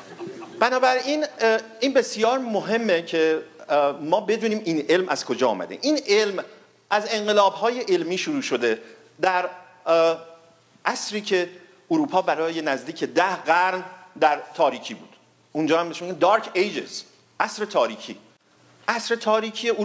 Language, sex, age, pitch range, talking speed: Persian, male, 50-69, 135-225 Hz, 120 wpm